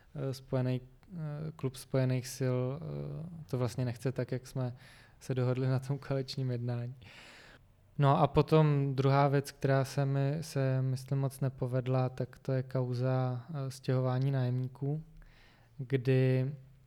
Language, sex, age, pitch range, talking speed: Czech, male, 20-39, 125-135 Hz, 125 wpm